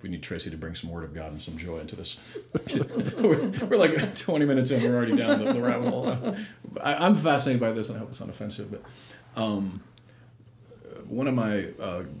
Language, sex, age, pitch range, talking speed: English, male, 40-59, 90-115 Hz, 195 wpm